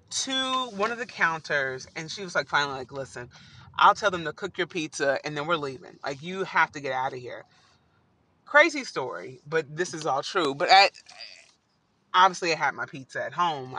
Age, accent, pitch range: 30-49, American, 130-195 Hz